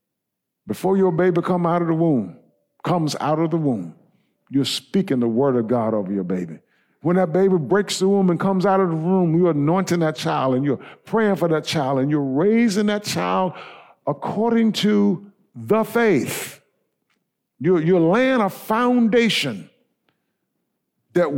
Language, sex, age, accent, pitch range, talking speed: English, male, 50-69, American, 155-210 Hz, 165 wpm